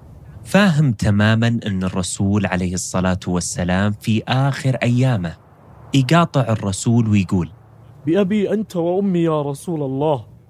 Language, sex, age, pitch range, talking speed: Arabic, male, 30-49, 100-135 Hz, 110 wpm